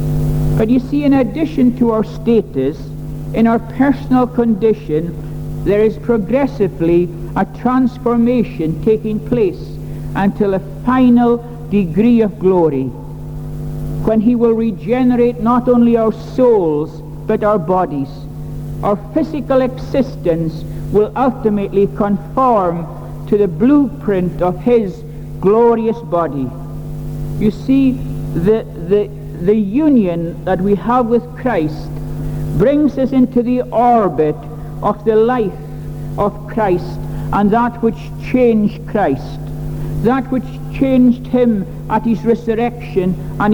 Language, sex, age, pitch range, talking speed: English, male, 60-79, 150-235 Hz, 115 wpm